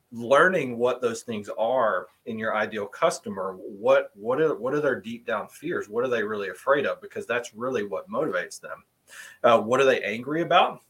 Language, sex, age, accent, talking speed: English, male, 30-49, American, 200 wpm